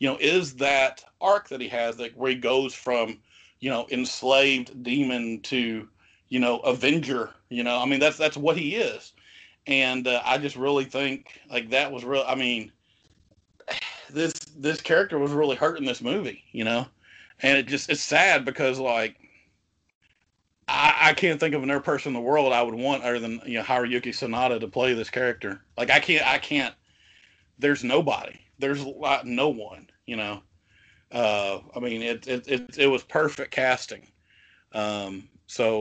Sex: male